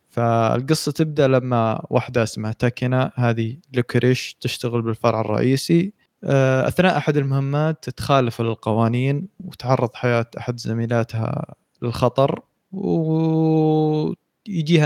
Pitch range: 115-140 Hz